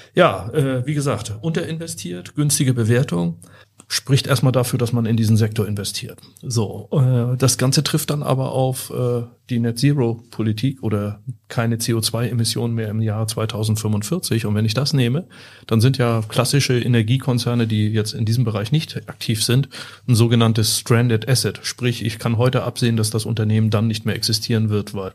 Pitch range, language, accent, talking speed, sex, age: 110-125 Hz, German, German, 165 wpm, male, 40-59